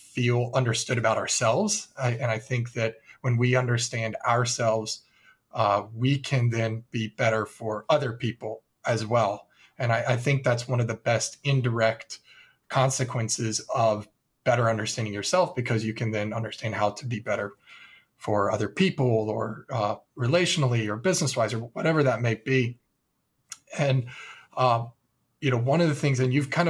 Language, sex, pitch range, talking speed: English, male, 115-135 Hz, 160 wpm